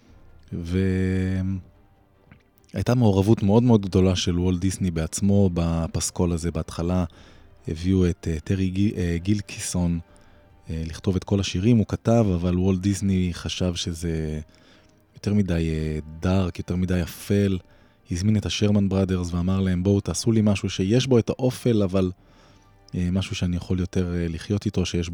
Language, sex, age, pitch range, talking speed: Hebrew, male, 20-39, 85-105 Hz, 130 wpm